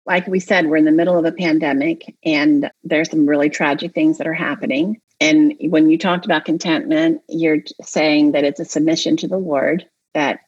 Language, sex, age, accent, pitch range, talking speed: English, female, 40-59, American, 155-220 Hz, 200 wpm